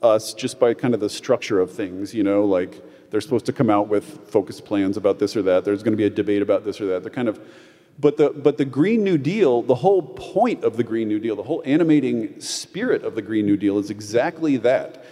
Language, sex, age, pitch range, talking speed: English, male, 40-59, 115-155 Hz, 255 wpm